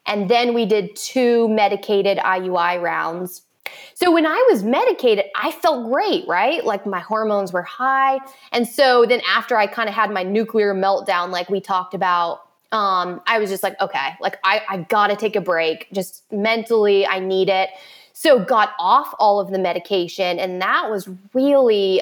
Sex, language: female, English